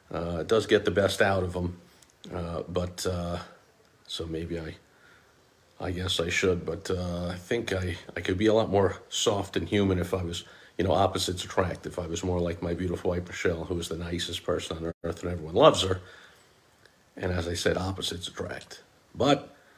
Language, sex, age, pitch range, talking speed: English, male, 50-69, 90-110 Hz, 205 wpm